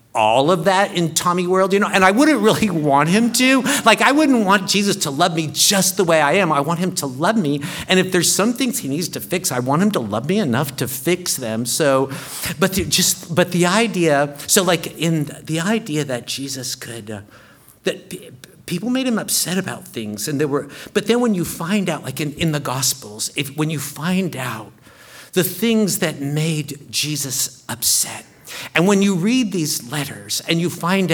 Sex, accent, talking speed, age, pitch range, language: male, American, 215 wpm, 50-69, 135-180 Hz, English